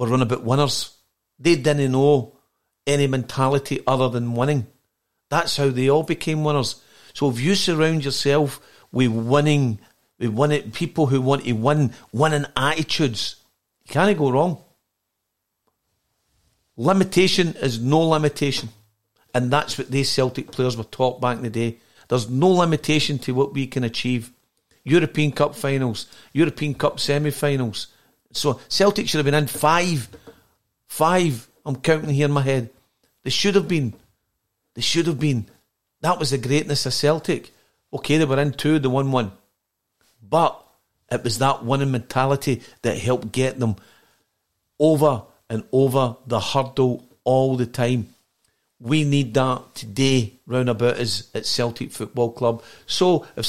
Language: English